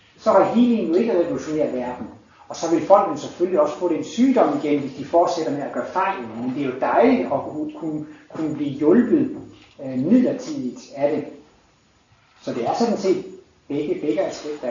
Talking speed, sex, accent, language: 185 wpm, male, native, Danish